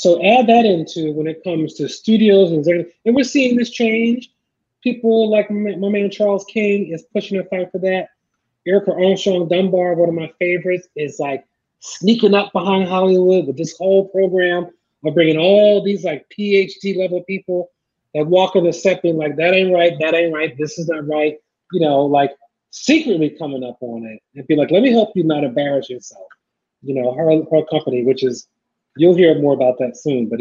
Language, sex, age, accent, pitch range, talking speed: English, male, 30-49, American, 155-210 Hz, 195 wpm